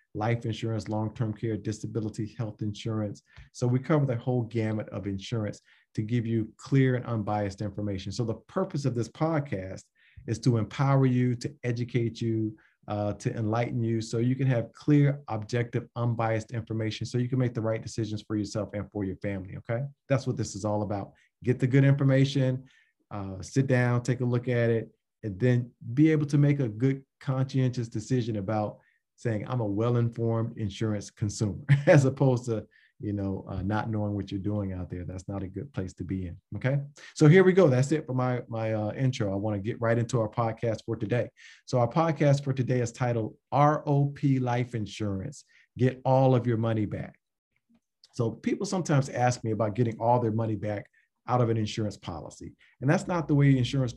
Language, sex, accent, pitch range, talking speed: English, male, American, 105-130 Hz, 200 wpm